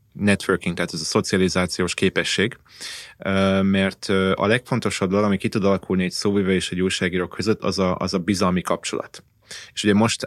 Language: Hungarian